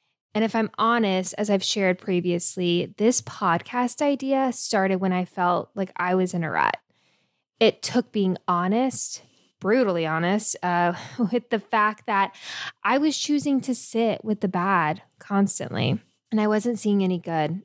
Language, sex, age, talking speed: English, female, 10-29, 160 wpm